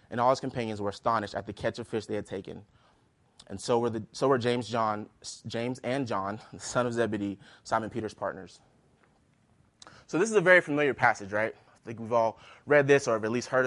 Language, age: English, 20-39